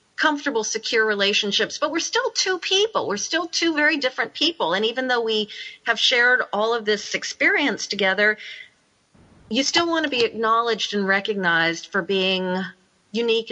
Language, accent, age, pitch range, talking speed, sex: English, American, 40-59, 195-235 Hz, 160 wpm, female